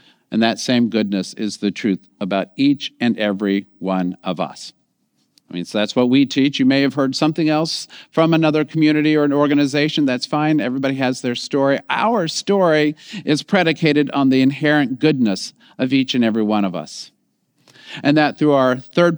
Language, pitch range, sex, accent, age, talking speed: English, 120-155 Hz, male, American, 50-69, 185 wpm